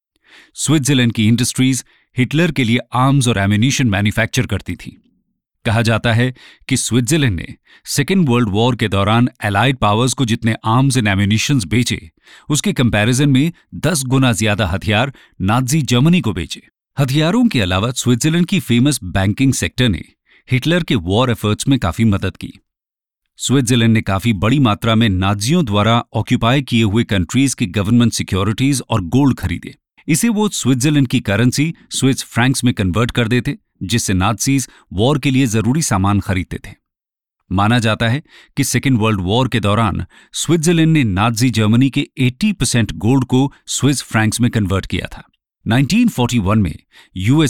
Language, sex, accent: English, male, Indian